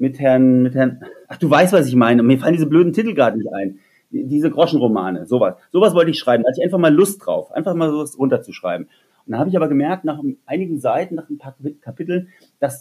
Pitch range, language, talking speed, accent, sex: 135-180 Hz, German, 235 wpm, German, male